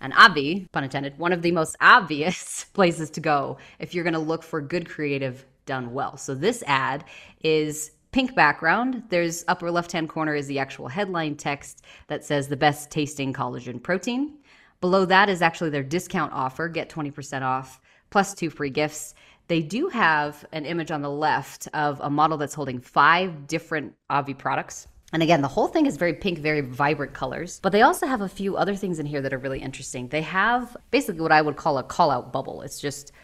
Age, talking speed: 20-39, 205 wpm